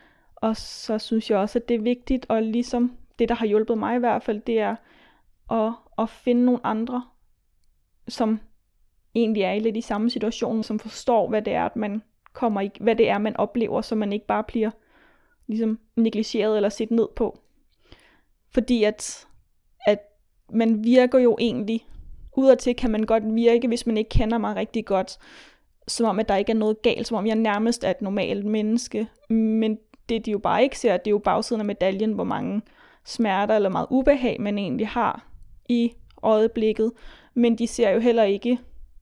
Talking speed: 190 wpm